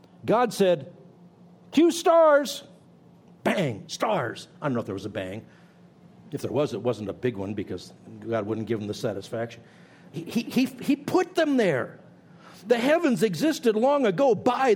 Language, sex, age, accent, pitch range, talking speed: English, male, 60-79, American, 155-225 Hz, 170 wpm